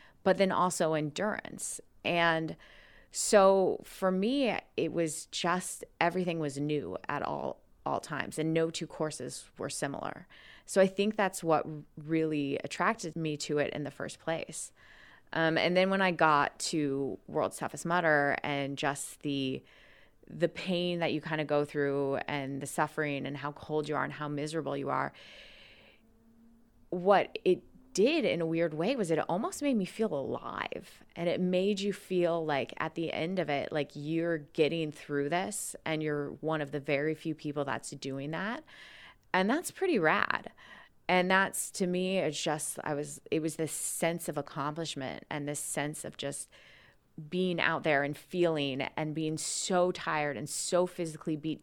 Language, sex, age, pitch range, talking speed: English, female, 20-39, 145-180 Hz, 175 wpm